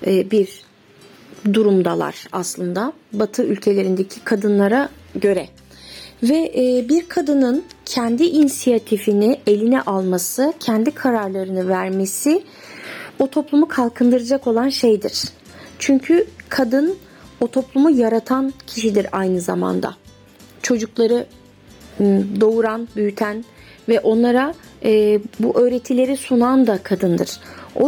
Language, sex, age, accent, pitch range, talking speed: Turkish, female, 30-49, native, 210-270 Hz, 90 wpm